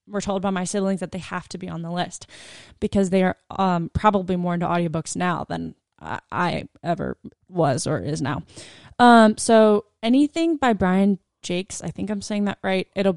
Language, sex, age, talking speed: English, female, 20-39, 195 wpm